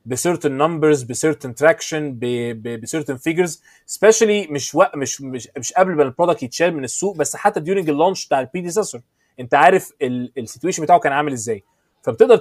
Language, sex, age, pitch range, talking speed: Arabic, male, 20-39, 135-190 Hz, 145 wpm